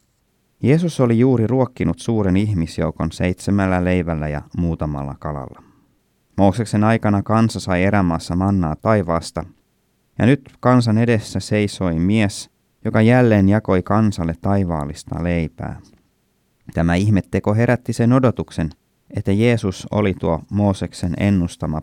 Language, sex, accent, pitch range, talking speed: Finnish, male, native, 85-105 Hz, 115 wpm